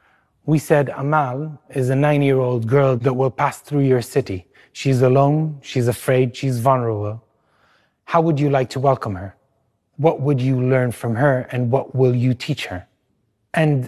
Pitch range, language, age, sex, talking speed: 120-140 Hz, English, 30-49, male, 170 wpm